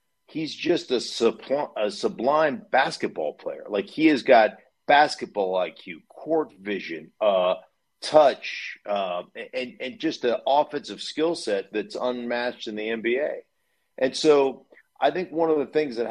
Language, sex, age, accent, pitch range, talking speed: English, male, 50-69, American, 110-150 Hz, 150 wpm